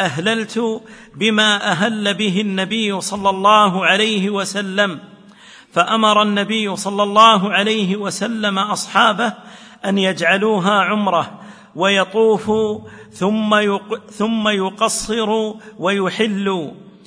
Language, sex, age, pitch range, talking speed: Arabic, male, 50-69, 195-215 Hz, 85 wpm